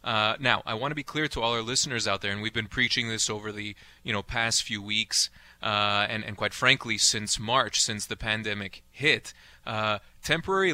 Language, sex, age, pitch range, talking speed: English, male, 30-49, 105-130 Hz, 210 wpm